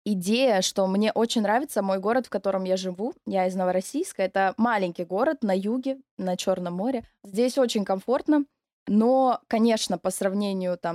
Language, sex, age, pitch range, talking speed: Russian, female, 20-39, 190-255 Hz, 160 wpm